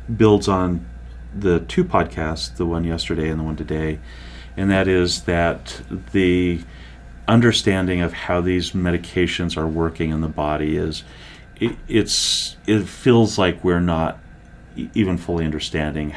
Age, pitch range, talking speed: 40-59, 80-90 Hz, 140 wpm